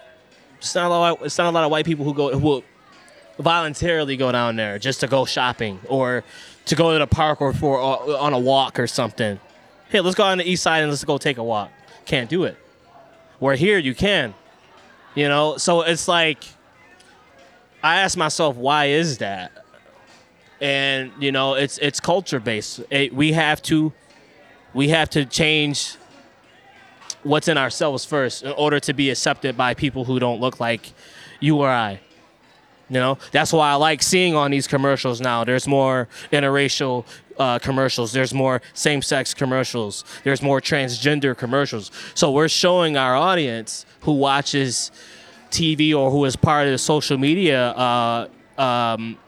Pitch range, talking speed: 130-155 Hz, 175 wpm